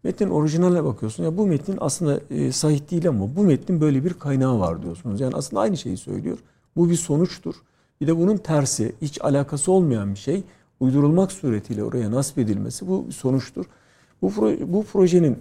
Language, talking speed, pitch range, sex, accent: Turkish, 170 wpm, 120-170 Hz, male, native